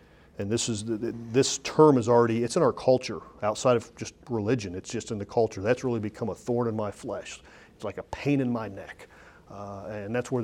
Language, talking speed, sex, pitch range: English, 225 wpm, male, 110-150 Hz